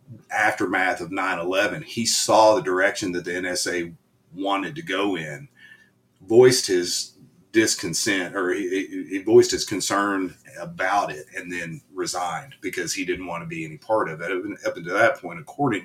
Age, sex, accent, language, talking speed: 40-59, male, American, English, 165 wpm